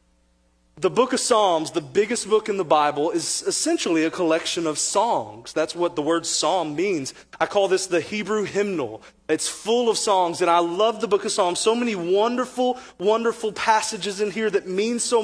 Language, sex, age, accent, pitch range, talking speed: English, male, 30-49, American, 170-230 Hz, 195 wpm